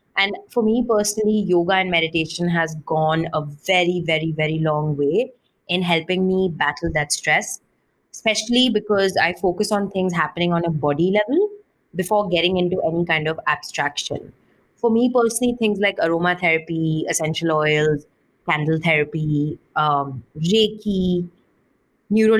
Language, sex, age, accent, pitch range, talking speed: English, female, 20-39, Indian, 165-210 Hz, 140 wpm